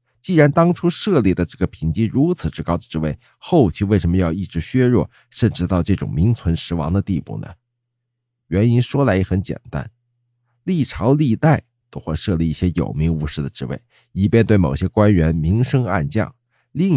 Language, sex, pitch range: Chinese, male, 85-120 Hz